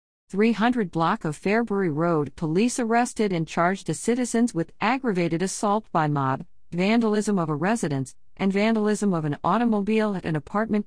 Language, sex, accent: English, female, American